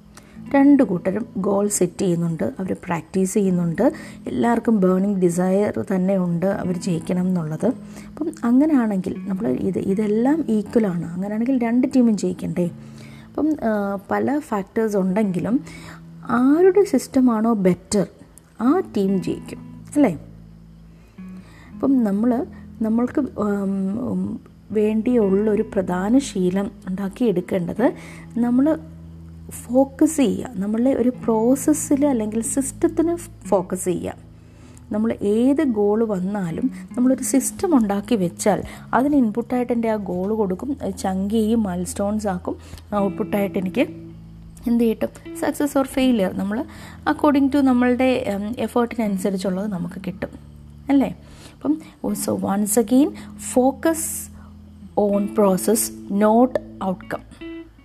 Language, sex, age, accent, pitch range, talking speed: Malayalam, female, 20-39, native, 190-255 Hz, 95 wpm